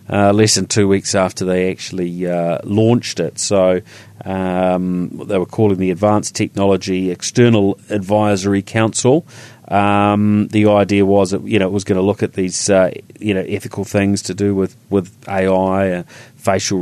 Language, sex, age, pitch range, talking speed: English, male, 30-49, 95-105 Hz, 170 wpm